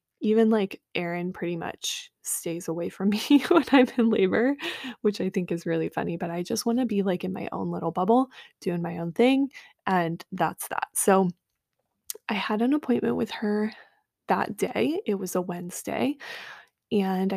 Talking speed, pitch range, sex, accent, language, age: 180 wpm, 190-230 Hz, female, American, English, 20-39